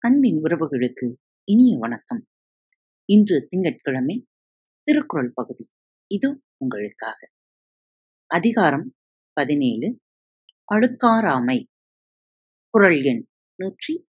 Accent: native